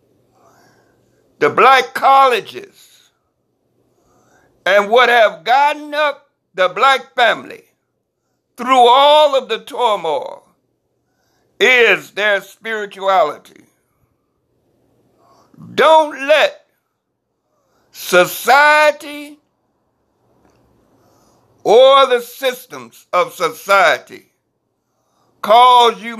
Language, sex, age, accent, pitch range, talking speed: English, male, 60-79, American, 210-295 Hz, 65 wpm